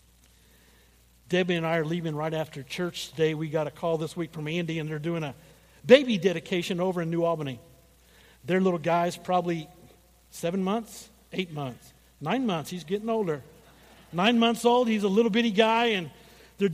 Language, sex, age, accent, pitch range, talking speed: English, male, 50-69, American, 155-225 Hz, 180 wpm